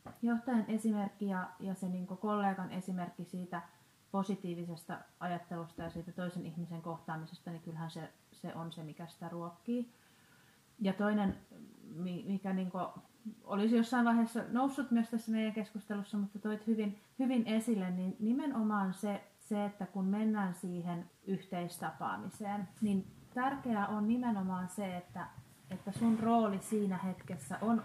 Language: Finnish